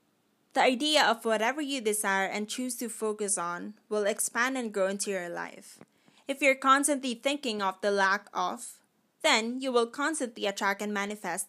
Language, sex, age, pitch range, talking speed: English, female, 20-39, 195-245 Hz, 170 wpm